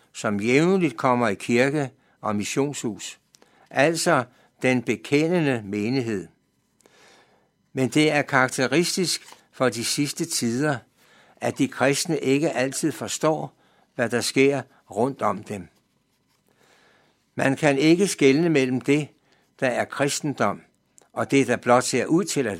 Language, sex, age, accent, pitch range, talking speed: Danish, male, 60-79, native, 120-150 Hz, 125 wpm